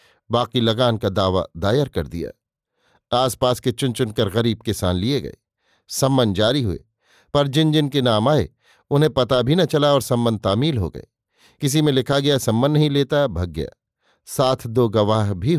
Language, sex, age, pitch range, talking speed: Hindi, male, 50-69, 115-140 Hz, 185 wpm